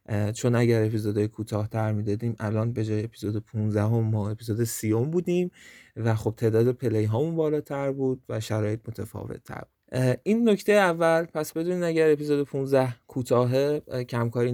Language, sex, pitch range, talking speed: Persian, male, 110-145 Hz, 155 wpm